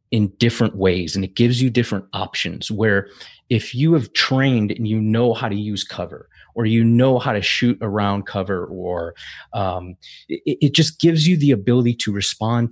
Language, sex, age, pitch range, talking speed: English, male, 30-49, 100-120 Hz, 190 wpm